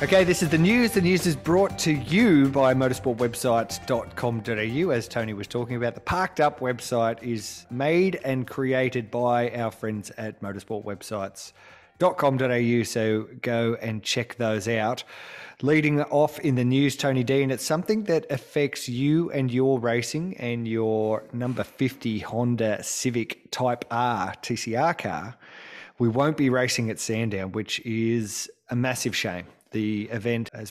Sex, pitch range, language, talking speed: male, 110-135 Hz, English, 150 wpm